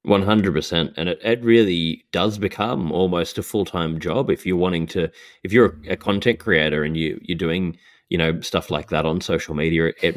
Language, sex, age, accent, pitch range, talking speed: English, male, 20-39, Australian, 80-95 Hz, 220 wpm